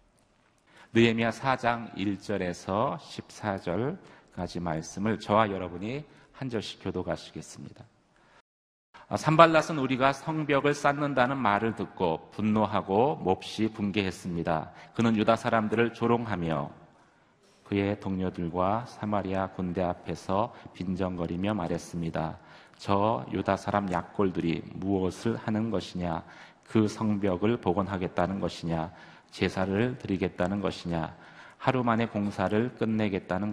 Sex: male